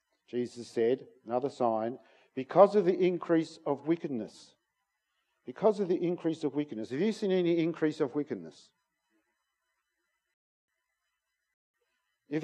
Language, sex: English, male